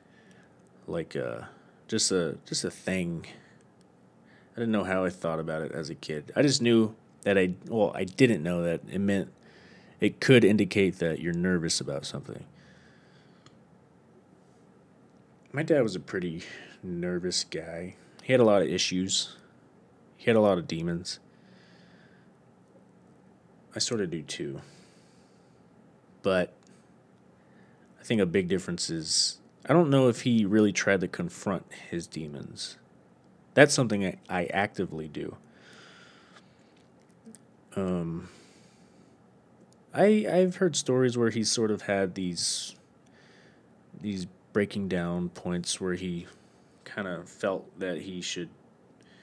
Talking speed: 135 wpm